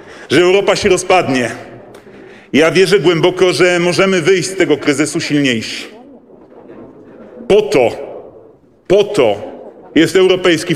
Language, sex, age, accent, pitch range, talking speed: Polish, male, 40-59, native, 165-200 Hz, 110 wpm